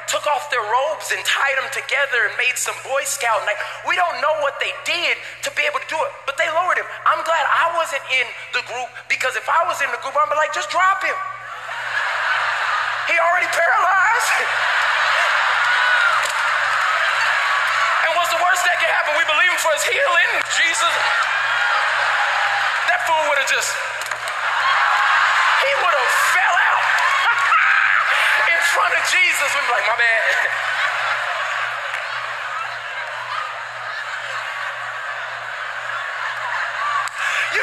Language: English